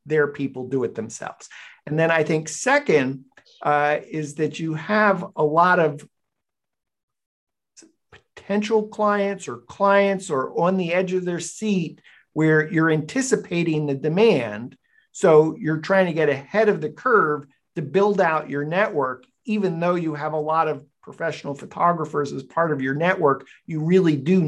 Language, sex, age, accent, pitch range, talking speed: English, male, 50-69, American, 140-175 Hz, 160 wpm